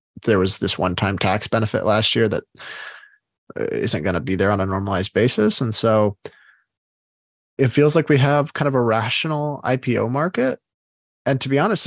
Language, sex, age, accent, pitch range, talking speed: English, male, 20-39, American, 105-130 Hz, 180 wpm